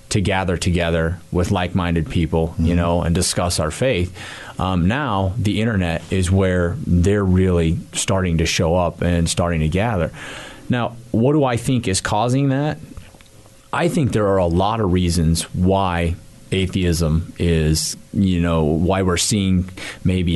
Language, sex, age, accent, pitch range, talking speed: English, male, 30-49, American, 85-105 Hz, 155 wpm